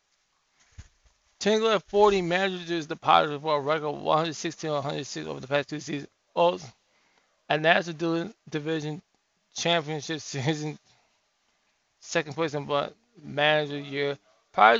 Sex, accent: male, American